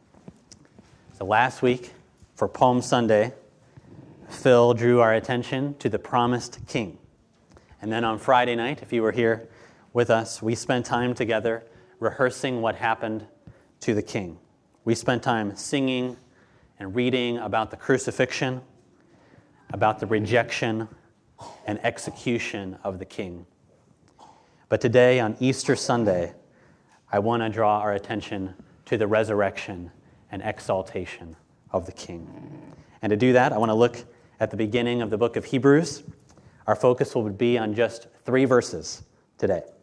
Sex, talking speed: male, 145 wpm